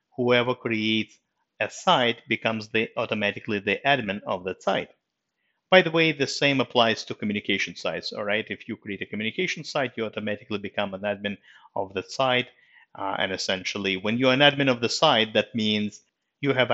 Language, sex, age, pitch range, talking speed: English, male, 50-69, 100-125 Hz, 185 wpm